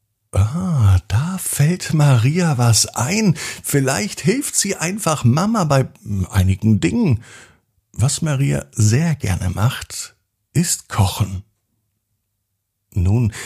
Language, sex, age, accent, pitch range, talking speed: German, male, 50-69, German, 100-130 Hz, 100 wpm